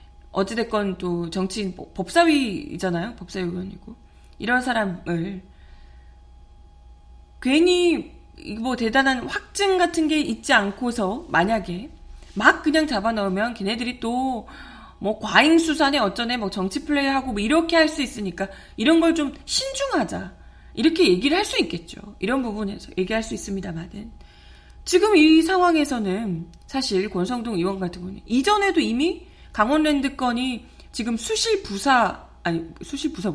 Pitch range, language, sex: 195-305 Hz, Korean, female